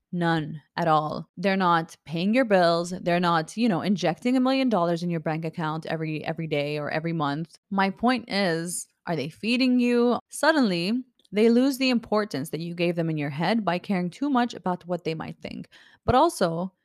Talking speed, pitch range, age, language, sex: 200 wpm, 170-230 Hz, 20-39, English, female